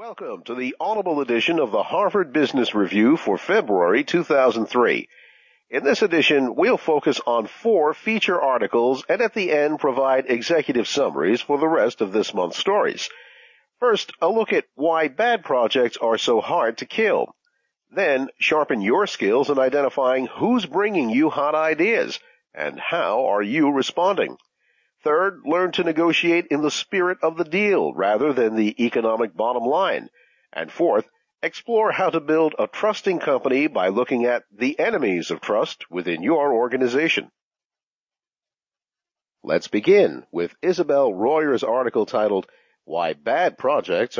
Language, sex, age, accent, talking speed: English, male, 50-69, American, 150 wpm